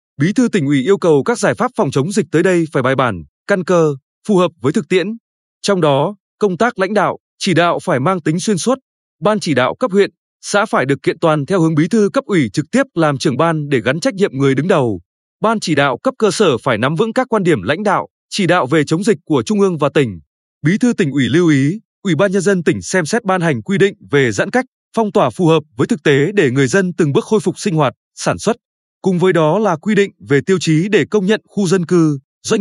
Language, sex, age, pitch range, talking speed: Vietnamese, male, 20-39, 150-205 Hz, 265 wpm